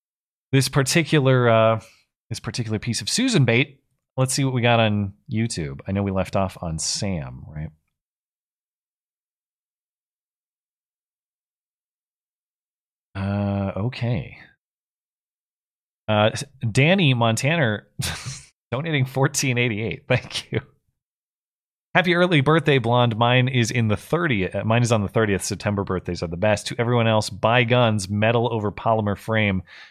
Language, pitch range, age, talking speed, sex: English, 95-125 Hz, 30-49, 120 wpm, male